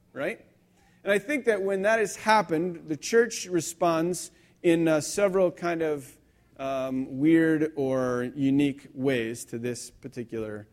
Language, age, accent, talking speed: English, 40-59, American, 140 wpm